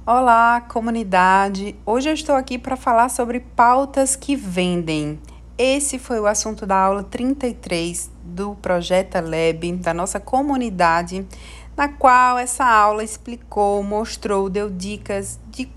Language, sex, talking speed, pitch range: Portuguese, female, 130 wpm, 180-230 Hz